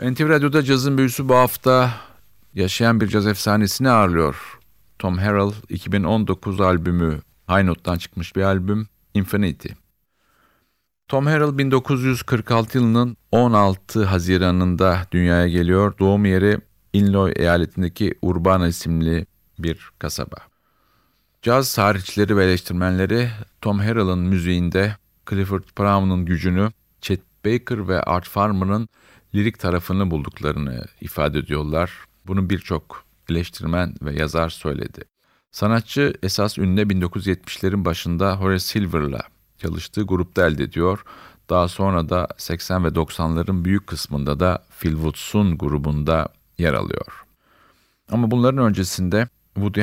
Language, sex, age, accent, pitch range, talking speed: Turkish, male, 50-69, native, 85-105 Hz, 110 wpm